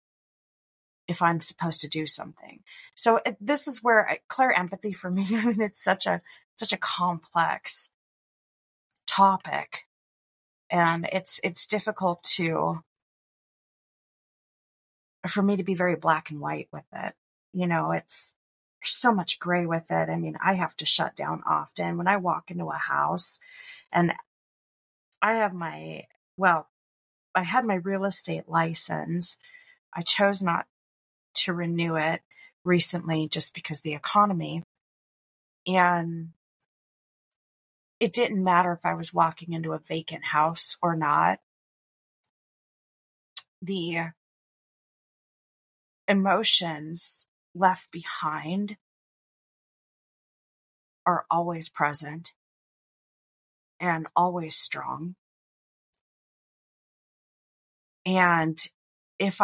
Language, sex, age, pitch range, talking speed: English, female, 30-49, 160-195 Hz, 110 wpm